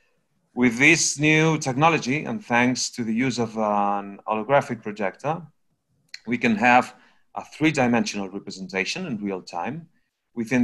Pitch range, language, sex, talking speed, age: 105-135 Hz, English, male, 130 wpm, 30-49